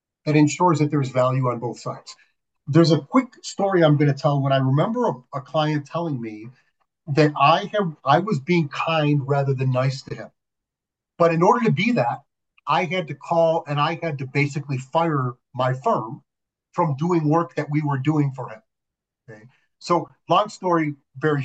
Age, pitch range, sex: 40-59, 130-165 Hz, male